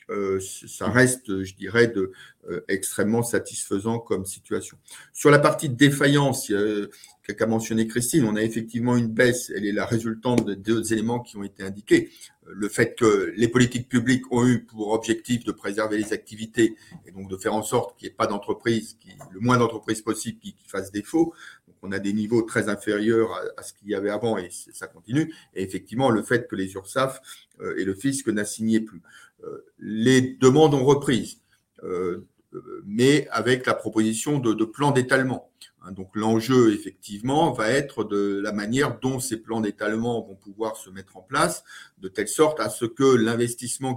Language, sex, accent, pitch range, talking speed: French, male, French, 105-135 Hz, 185 wpm